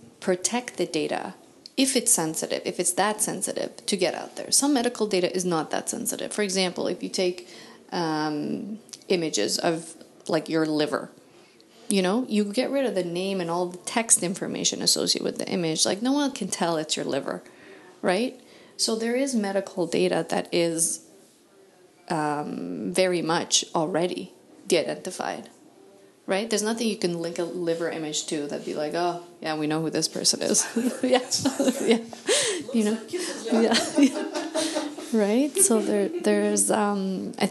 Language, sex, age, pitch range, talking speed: English, female, 30-49, 165-225 Hz, 165 wpm